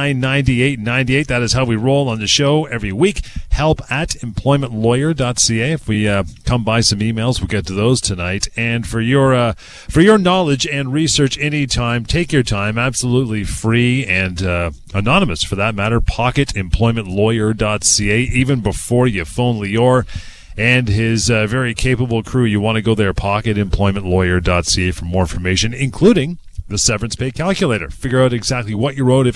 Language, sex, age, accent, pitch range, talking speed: English, male, 30-49, American, 100-130 Hz, 170 wpm